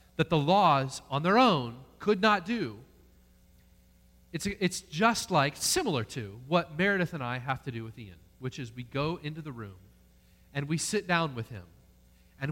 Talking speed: 180 wpm